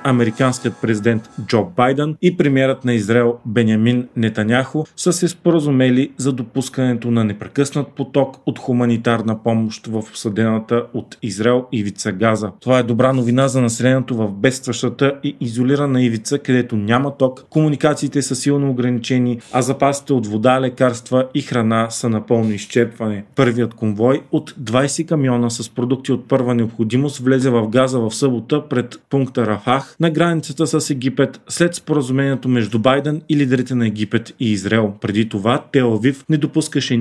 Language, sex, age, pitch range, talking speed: Bulgarian, male, 40-59, 115-140 Hz, 150 wpm